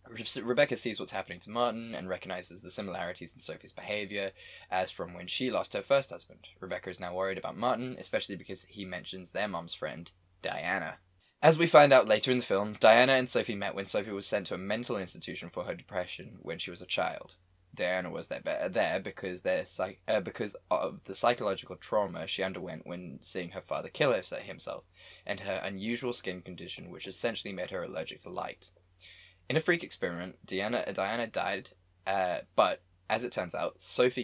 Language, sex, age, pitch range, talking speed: English, male, 10-29, 90-120 Hz, 185 wpm